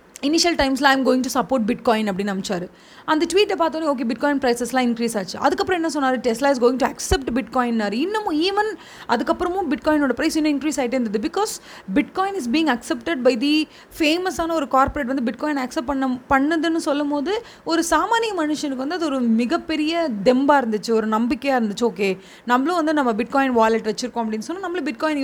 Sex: female